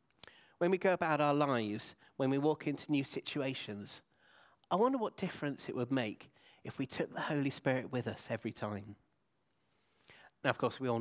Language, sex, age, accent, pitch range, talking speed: English, male, 30-49, British, 115-140 Hz, 185 wpm